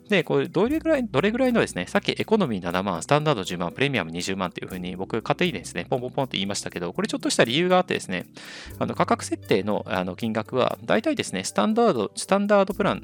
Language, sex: Japanese, male